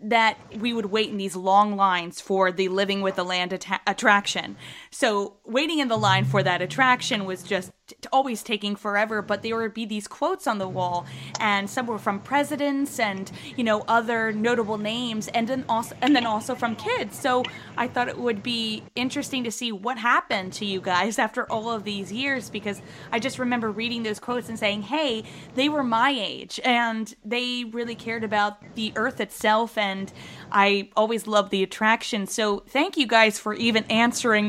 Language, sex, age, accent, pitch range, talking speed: English, female, 20-39, American, 205-250 Hz, 190 wpm